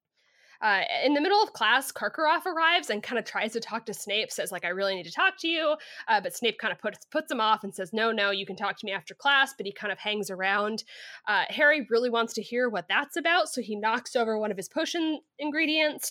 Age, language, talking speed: 20-39, English, 255 wpm